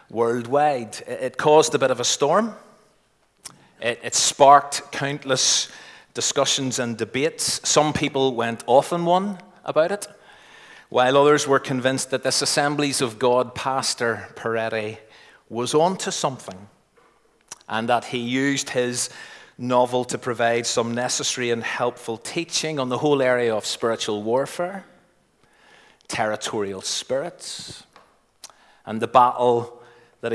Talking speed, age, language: 125 wpm, 30-49, English